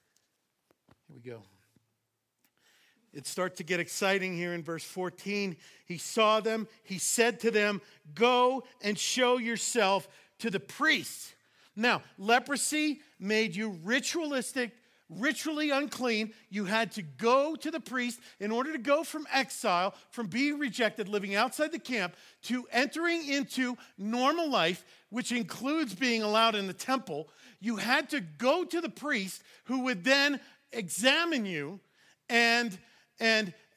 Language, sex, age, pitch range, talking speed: English, male, 50-69, 205-275 Hz, 140 wpm